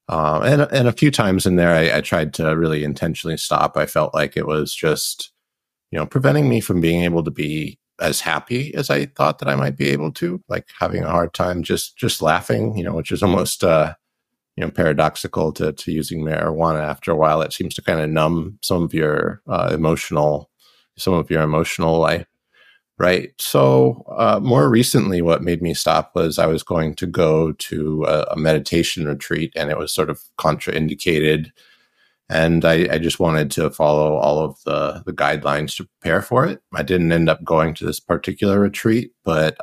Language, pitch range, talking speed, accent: English, 75-90 Hz, 200 wpm, American